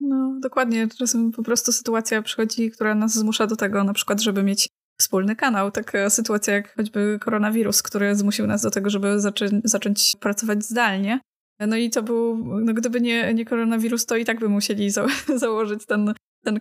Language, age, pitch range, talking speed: Polish, 20-39, 205-230 Hz, 185 wpm